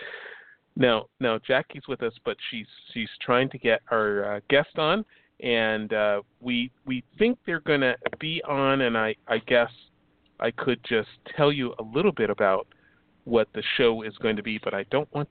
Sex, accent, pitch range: male, American, 110-135 Hz